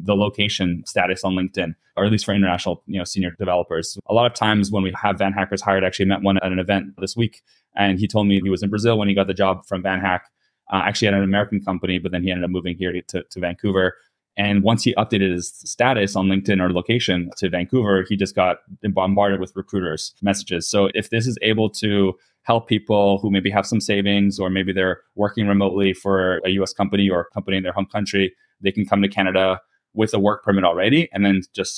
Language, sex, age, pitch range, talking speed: English, male, 20-39, 95-105 Hz, 235 wpm